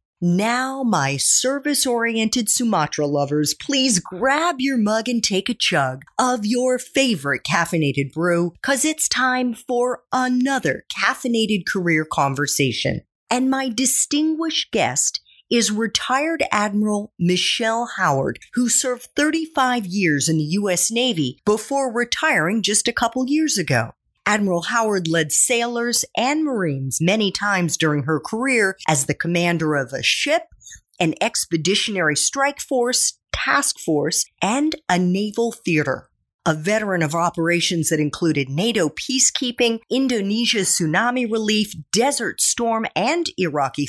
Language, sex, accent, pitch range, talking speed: English, female, American, 170-250 Hz, 125 wpm